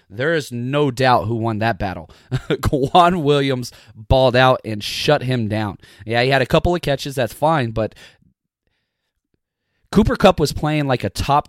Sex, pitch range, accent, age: male, 115-145 Hz, American, 30-49